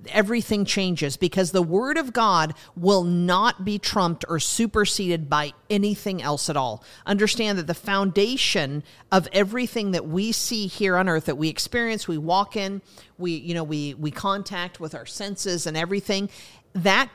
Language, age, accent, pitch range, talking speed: English, 50-69, American, 165-210 Hz, 170 wpm